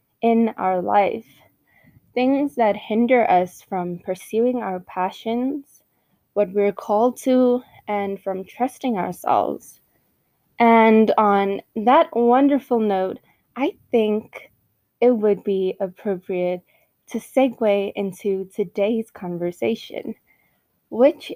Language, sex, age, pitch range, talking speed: English, female, 20-39, 190-245 Hz, 100 wpm